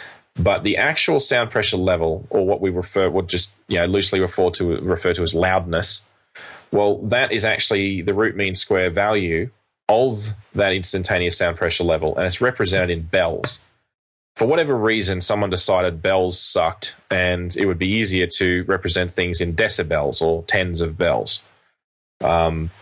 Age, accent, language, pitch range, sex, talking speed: 20-39, Australian, English, 85-100 Hz, male, 170 wpm